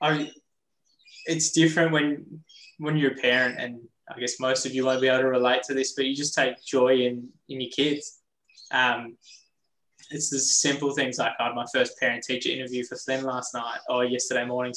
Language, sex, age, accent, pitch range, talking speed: English, male, 10-29, Australian, 125-140 Hz, 210 wpm